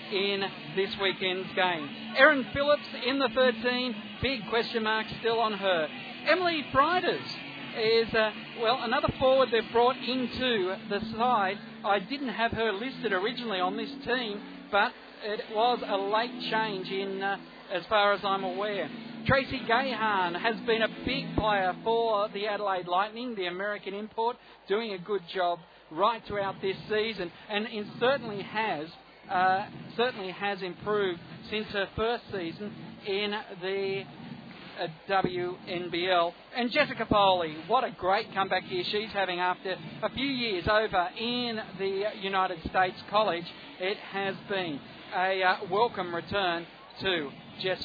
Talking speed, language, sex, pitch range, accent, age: 145 wpm, English, male, 185-230 Hz, Australian, 50-69